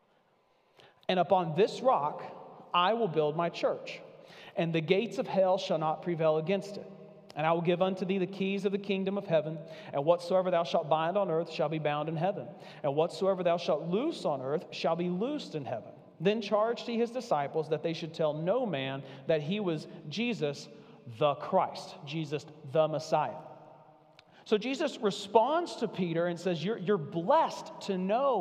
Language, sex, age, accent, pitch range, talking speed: English, male, 40-59, American, 165-225 Hz, 185 wpm